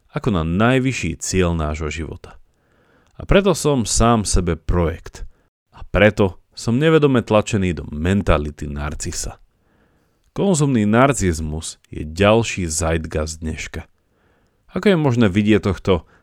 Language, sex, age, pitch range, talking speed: Slovak, male, 40-59, 85-120 Hz, 115 wpm